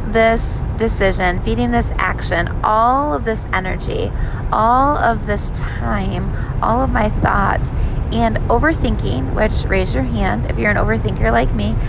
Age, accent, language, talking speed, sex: 20-39, American, English, 145 wpm, female